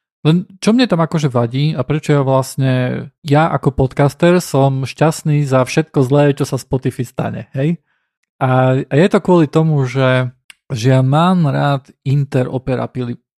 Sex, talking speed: male, 150 wpm